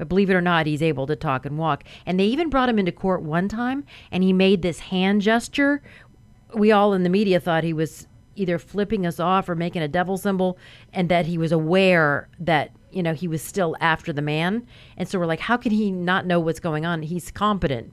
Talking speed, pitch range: 240 wpm, 165-210 Hz